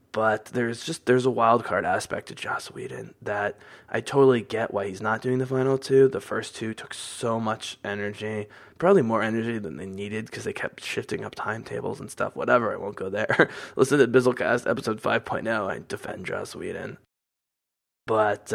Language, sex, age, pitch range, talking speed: English, male, 20-39, 105-130 Hz, 190 wpm